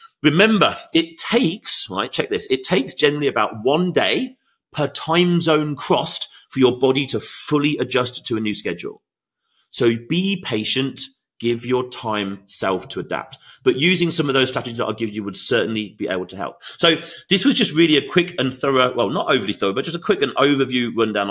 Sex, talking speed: male, 200 wpm